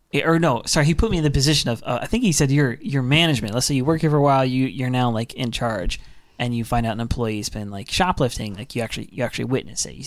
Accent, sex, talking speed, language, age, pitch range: American, male, 285 wpm, English, 20-39, 125-155 Hz